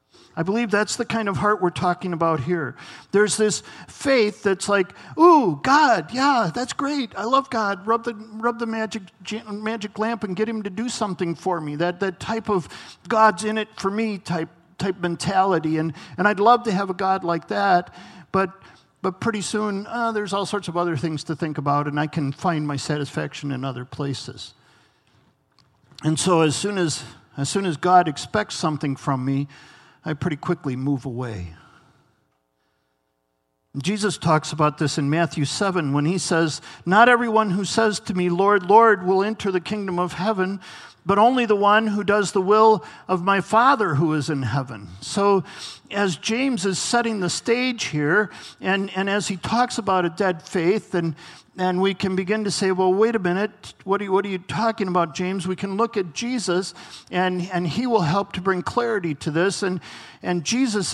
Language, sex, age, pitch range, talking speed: English, male, 50-69, 160-210 Hz, 195 wpm